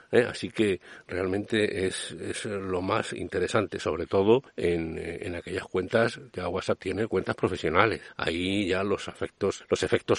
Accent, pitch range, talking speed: Spanish, 90-115 Hz, 160 wpm